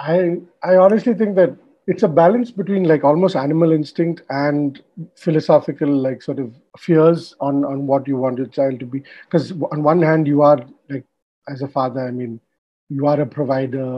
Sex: male